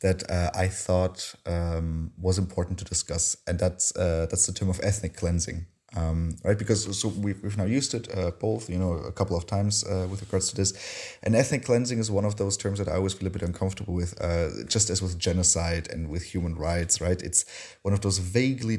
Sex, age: male, 30-49